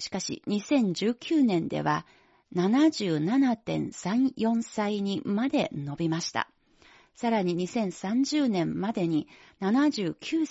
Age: 40-59